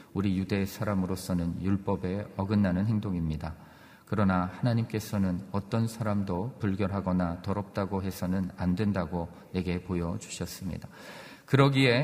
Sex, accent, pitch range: male, native, 90-115 Hz